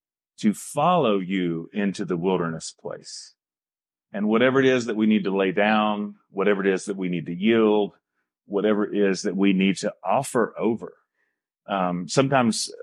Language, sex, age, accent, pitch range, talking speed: English, male, 40-59, American, 80-115 Hz, 170 wpm